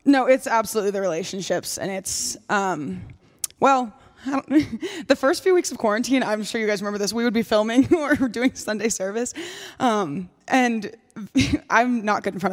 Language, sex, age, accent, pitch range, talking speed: English, female, 20-39, American, 205-270 Hz, 180 wpm